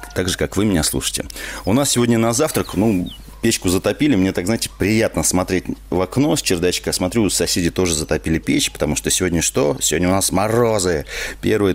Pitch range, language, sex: 80-100 Hz, Russian, male